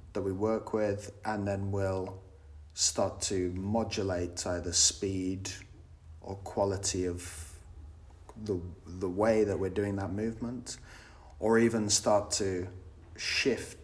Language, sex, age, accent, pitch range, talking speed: English, male, 30-49, British, 90-105 Hz, 120 wpm